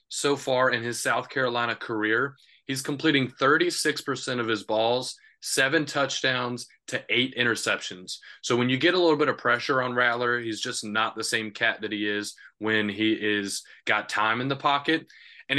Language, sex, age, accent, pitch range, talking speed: English, male, 20-39, American, 110-135 Hz, 180 wpm